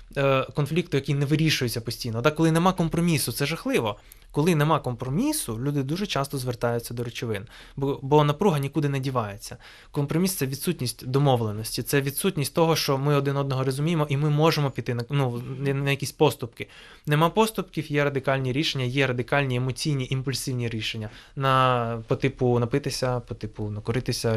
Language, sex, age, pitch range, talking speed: Ukrainian, male, 20-39, 120-150 Hz, 160 wpm